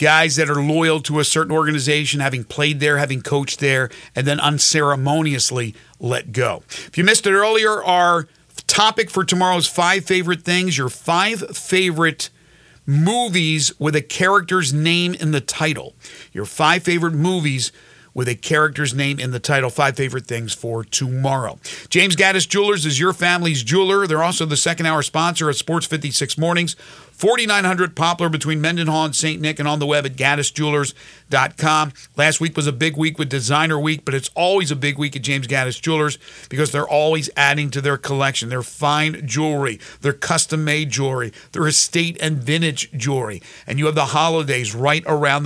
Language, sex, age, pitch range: English, male, 50-69, 140-165 Hz